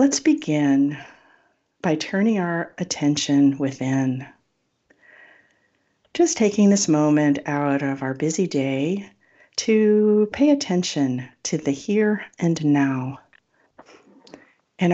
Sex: female